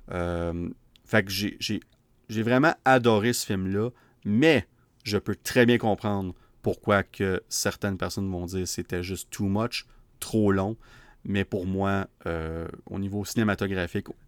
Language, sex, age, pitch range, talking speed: French, male, 30-49, 95-120 Hz, 165 wpm